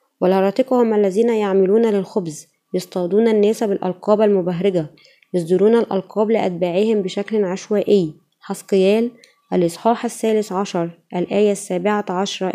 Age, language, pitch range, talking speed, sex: 20-39, Arabic, 185-215 Hz, 100 wpm, female